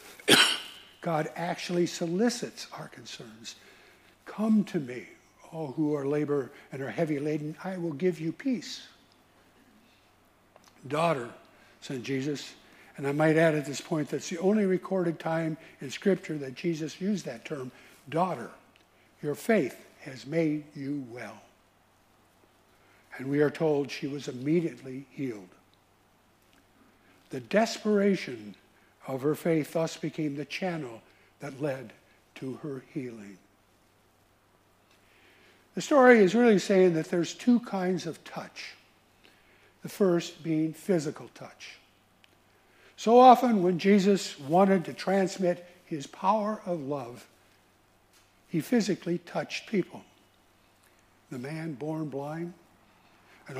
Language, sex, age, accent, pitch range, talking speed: English, male, 60-79, American, 130-175 Hz, 120 wpm